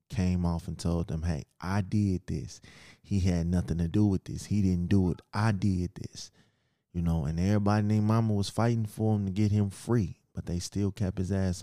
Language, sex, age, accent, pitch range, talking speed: English, male, 20-39, American, 95-115 Hz, 220 wpm